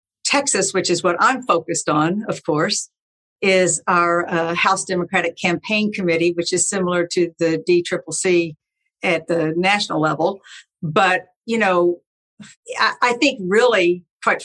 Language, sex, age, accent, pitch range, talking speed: English, female, 60-79, American, 175-220 Hz, 140 wpm